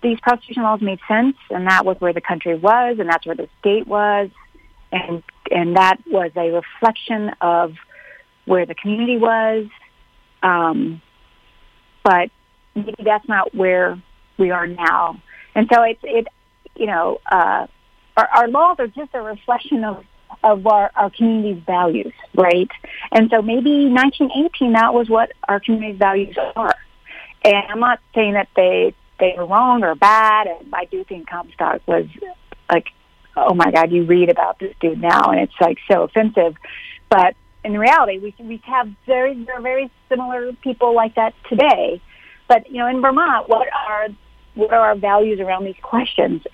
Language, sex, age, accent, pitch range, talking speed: English, female, 40-59, American, 185-235 Hz, 170 wpm